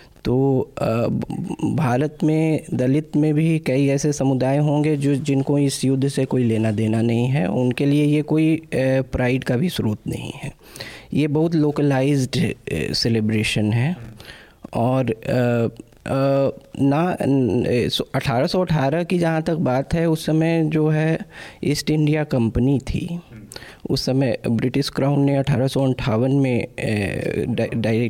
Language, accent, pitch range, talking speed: Hindi, native, 120-155 Hz, 125 wpm